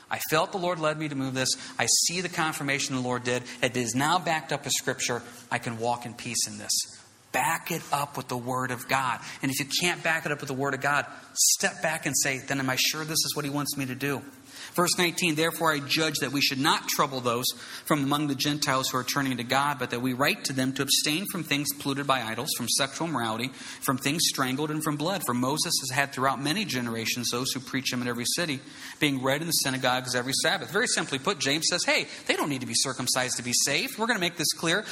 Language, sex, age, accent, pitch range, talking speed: English, male, 40-59, American, 135-215 Hz, 260 wpm